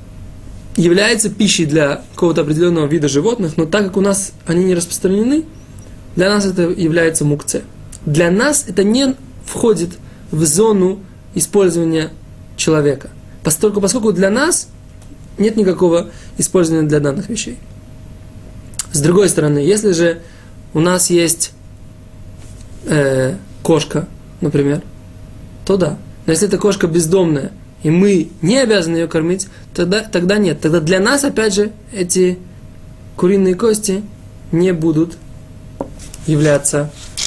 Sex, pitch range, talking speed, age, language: male, 145-190 Hz, 120 wpm, 20-39, Russian